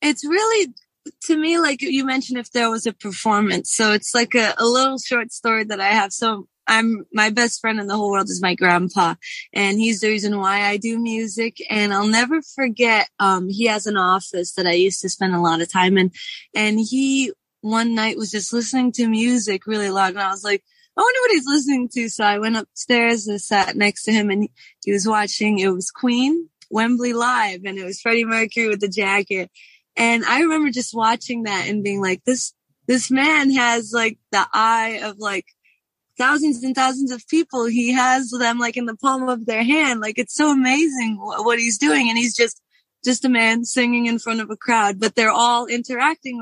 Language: English